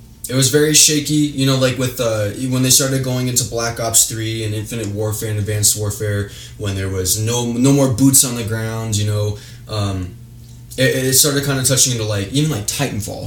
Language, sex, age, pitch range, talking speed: English, male, 20-39, 105-130 Hz, 215 wpm